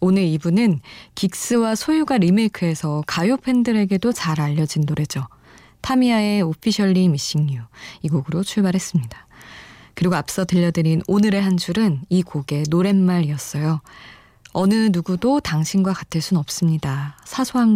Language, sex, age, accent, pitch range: Korean, female, 20-39, native, 155-210 Hz